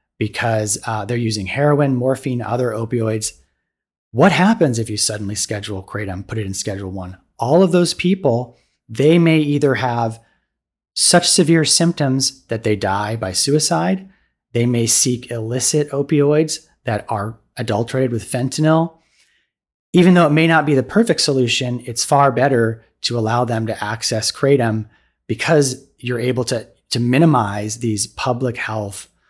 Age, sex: 30-49, male